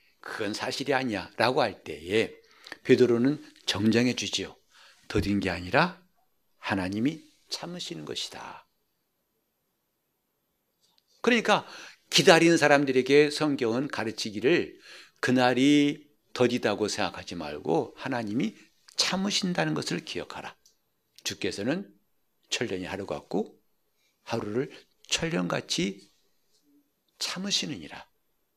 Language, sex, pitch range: Korean, male, 125-185 Hz